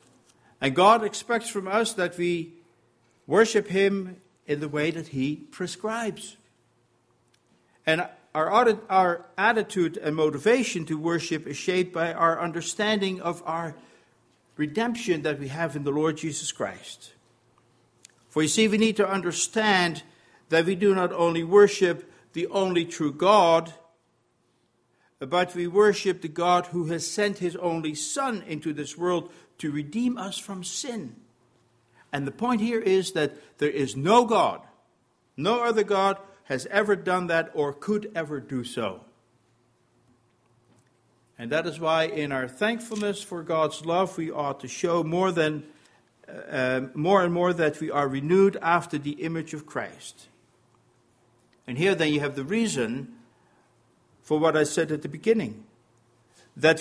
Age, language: 60-79, English